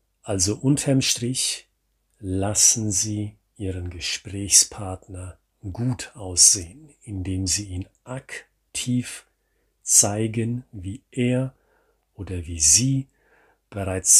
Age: 40-59